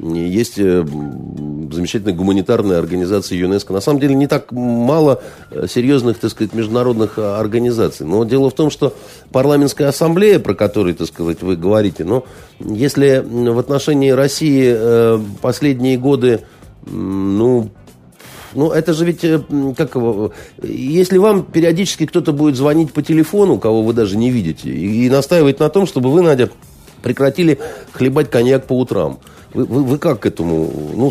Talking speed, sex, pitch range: 145 wpm, male, 110-150 Hz